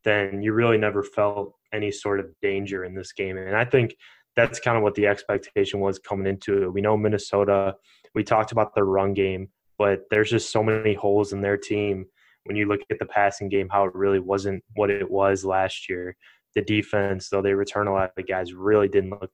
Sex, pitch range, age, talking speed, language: male, 95-105 Hz, 20-39, 220 wpm, English